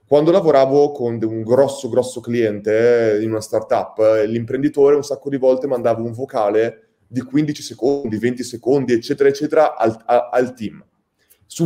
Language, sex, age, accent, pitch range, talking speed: Italian, male, 30-49, native, 130-190 Hz, 150 wpm